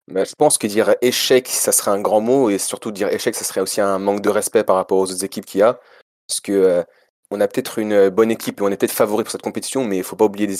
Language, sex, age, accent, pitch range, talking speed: French, male, 20-39, French, 95-120 Hz, 300 wpm